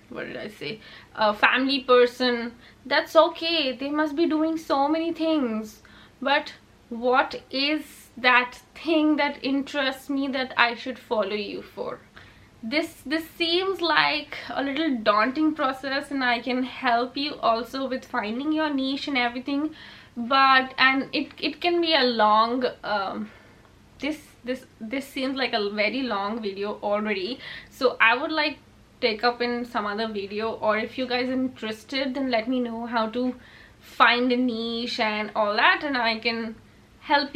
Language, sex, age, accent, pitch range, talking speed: English, female, 20-39, Indian, 230-285 Hz, 160 wpm